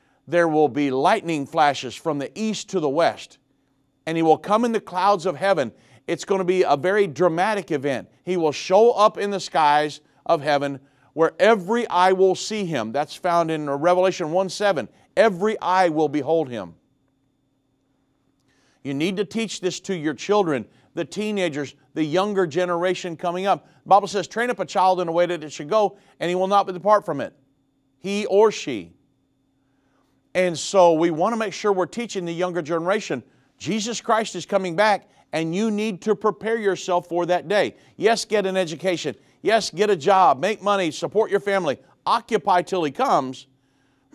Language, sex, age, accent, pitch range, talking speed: English, male, 50-69, American, 145-200 Hz, 185 wpm